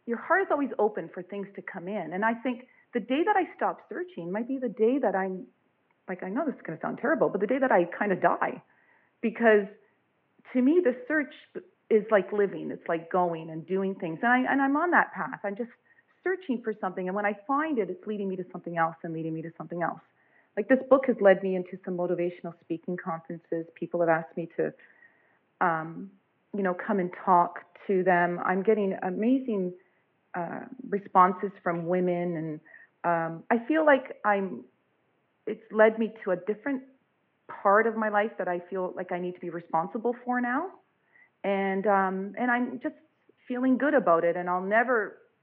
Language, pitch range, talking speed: English, 180-245 Hz, 205 wpm